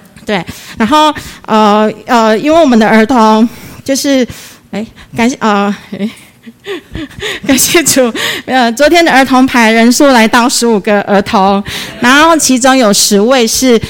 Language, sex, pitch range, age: Chinese, female, 200-250 Hz, 30-49